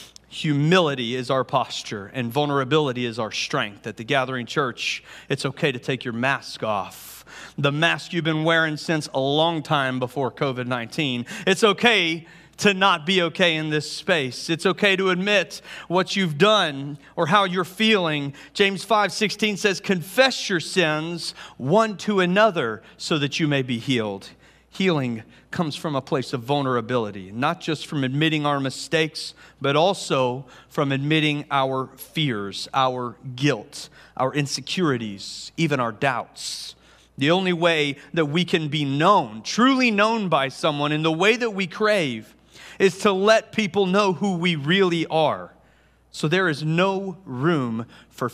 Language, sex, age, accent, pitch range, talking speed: English, male, 40-59, American, 130-185 Hz, 160 wpm